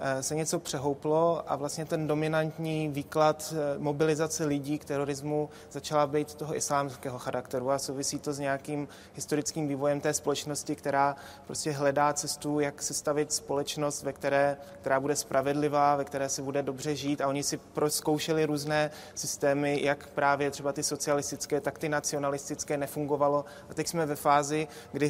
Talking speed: 155 wpm